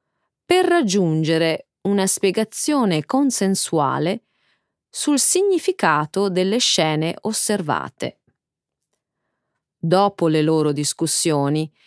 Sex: female